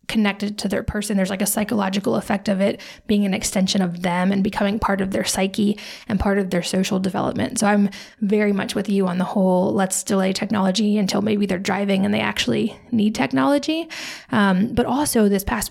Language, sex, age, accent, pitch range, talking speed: English, female, 20-39, American, 195-225 Hz, 205 wpm